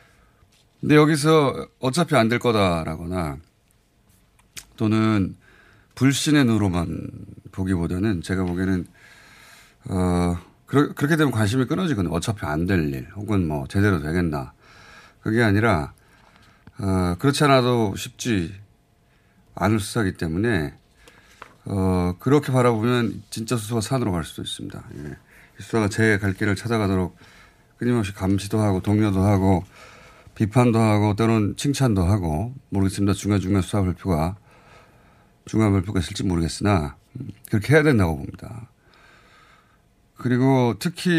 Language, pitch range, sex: Korean, 95-125 Hz, male